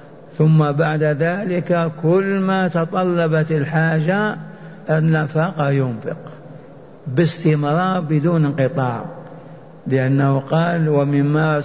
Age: 50-69